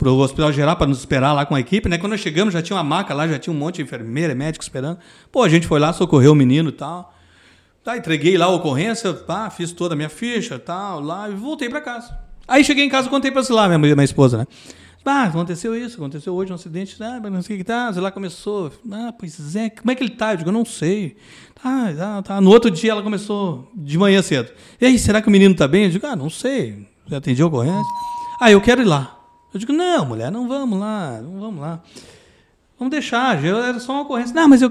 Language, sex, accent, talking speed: Portuguese, male, Brazilian, 260 wpm